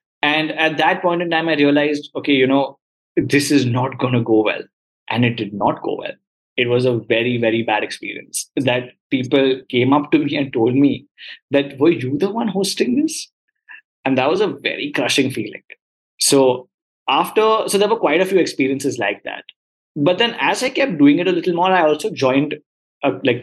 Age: 20-39